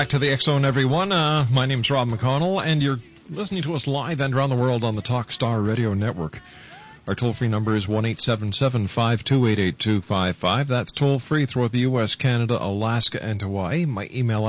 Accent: American